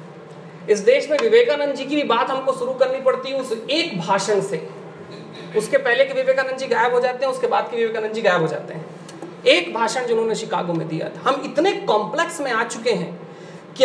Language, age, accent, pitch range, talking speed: Hindi, 30-49, native, 180-275 Hz, 215 wpm